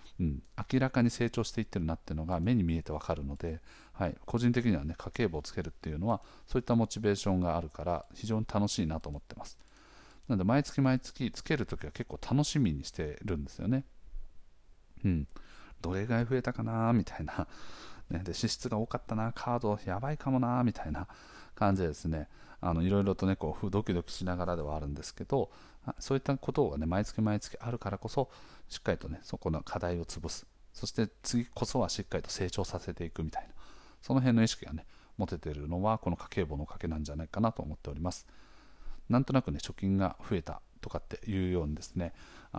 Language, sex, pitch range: Japanese, male, 85-115 Hz